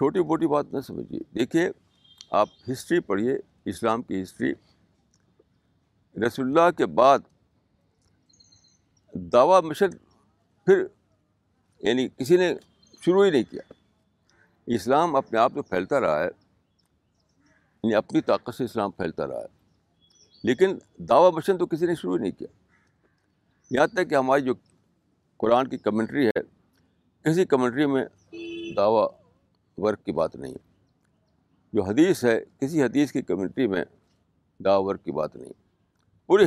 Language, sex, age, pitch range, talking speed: Urdu, male, 60-79, 95-155 Hz, 135 wpm